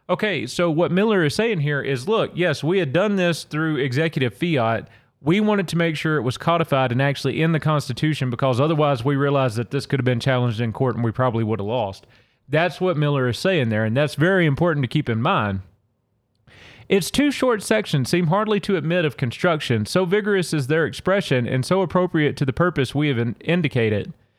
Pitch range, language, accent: 130-185 Hz, English, American